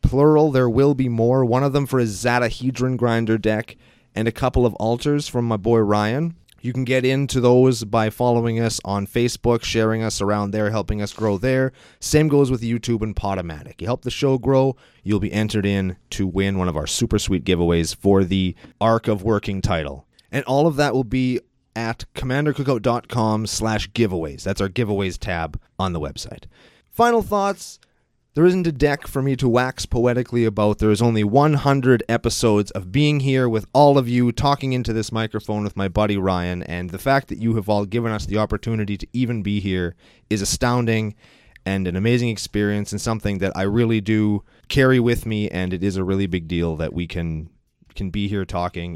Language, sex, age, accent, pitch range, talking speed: English, male, 30-49, American, 100-125 Hz, 200 wpm